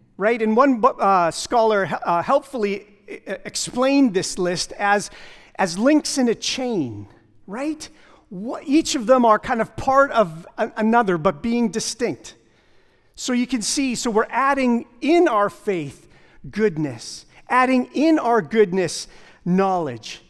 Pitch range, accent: 150-235 Hz, American